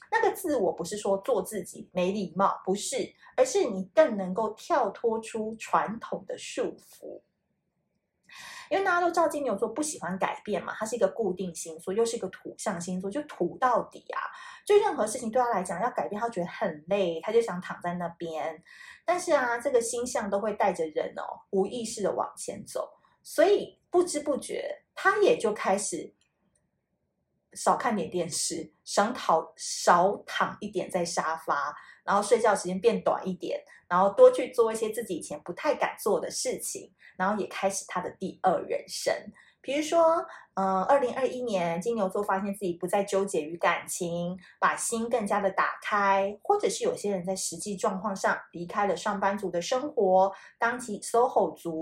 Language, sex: Chinese, female